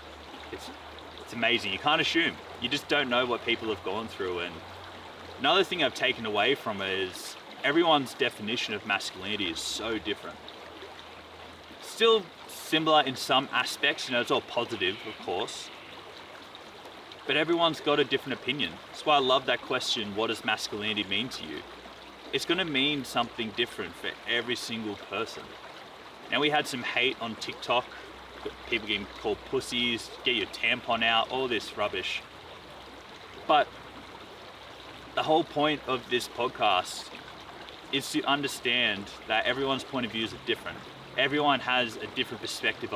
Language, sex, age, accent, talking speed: English, male, 30-49, Australian, 155 wpm